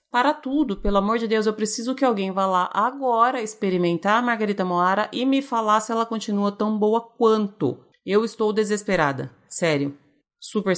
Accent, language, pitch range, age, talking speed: Brazilian, Portuguese, 175-230 Hz, 30-49, 175 wpm